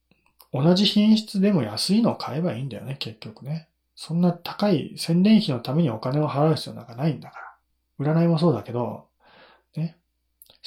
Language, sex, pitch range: Japanese, male, 120-170 Hz